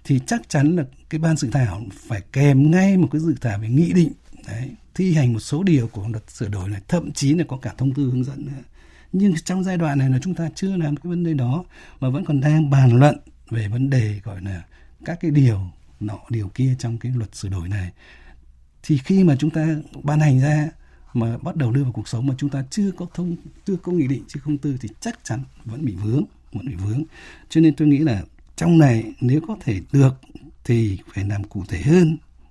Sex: male